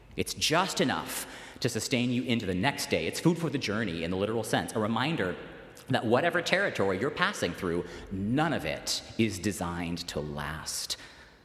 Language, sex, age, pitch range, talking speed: English, male, 30-49, 85-140 Hz, 180 wpm